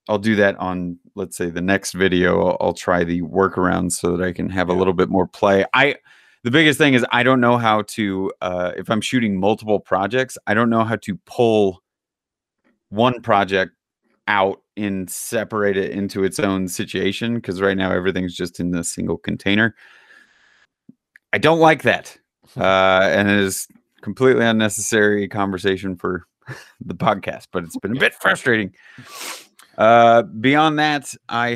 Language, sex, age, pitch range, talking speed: English, male, 30-49, 95-120 Hz, 170 wpm